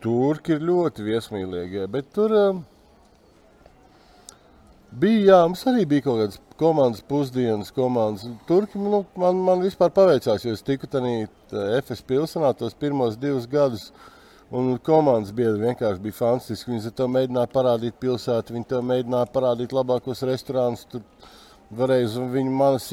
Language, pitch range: English, 110-140 Hz